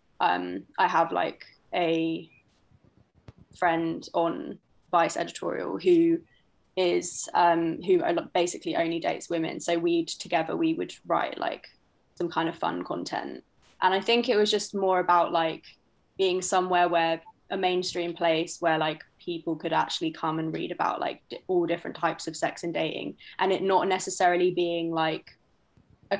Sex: female